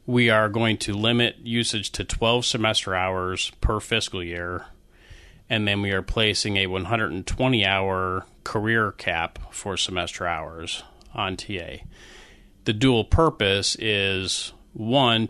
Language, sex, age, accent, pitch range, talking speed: English, male, 30-49, American, 95-115 Hz, 125 wpm